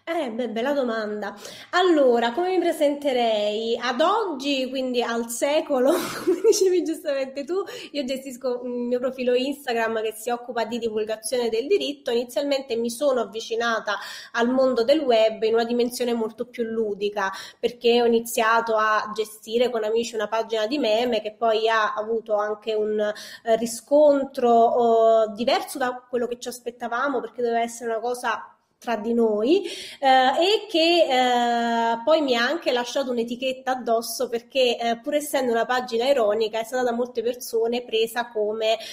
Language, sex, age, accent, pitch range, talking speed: Italian, female, 20-39, native, 225-270 Hz, 155 wpm